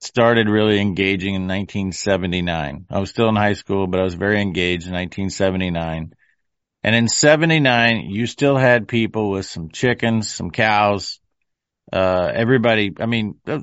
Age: 50-69